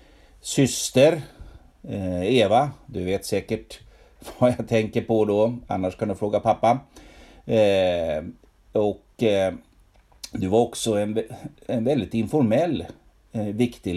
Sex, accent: male, native